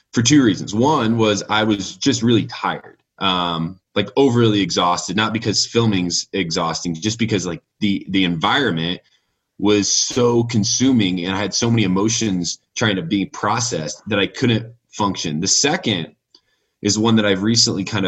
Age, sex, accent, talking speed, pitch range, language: 20-39, male, American, 165 wpm, 100-120 Hz, English